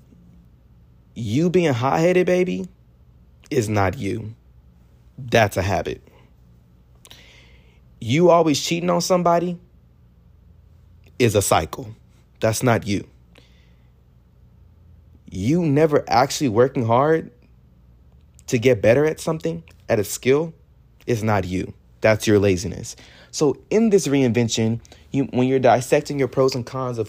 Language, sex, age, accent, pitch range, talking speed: English, male, 30-49, American, 85-130 Hz, 115 wpm